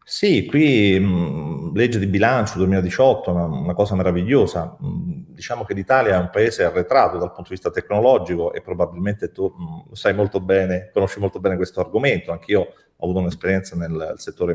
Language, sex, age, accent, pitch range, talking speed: Italian, male, 40-59, native, 85-110 Hz, 155 wpm